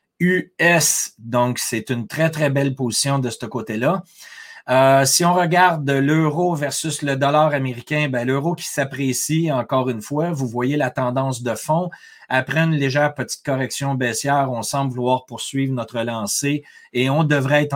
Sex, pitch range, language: male, 125-155 Hz, French